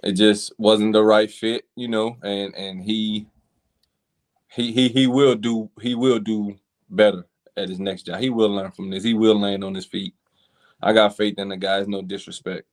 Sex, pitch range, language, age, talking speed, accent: male, 95-110 Hz, English, 20-39, 205 wpm, American